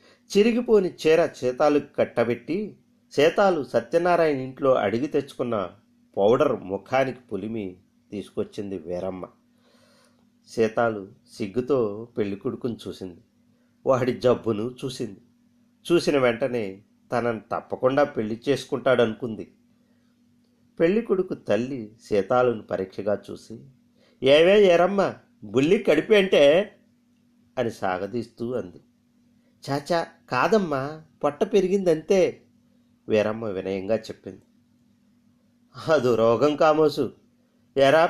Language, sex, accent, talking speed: Telugu, male, native, 85 wpm